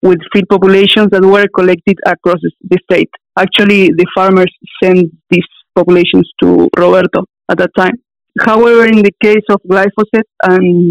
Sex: female